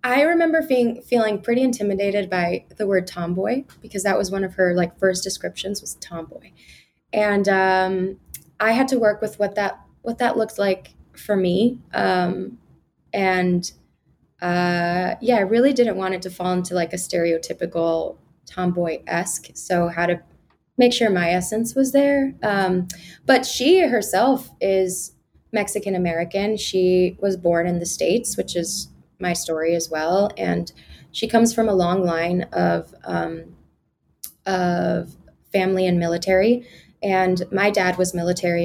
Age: 20-39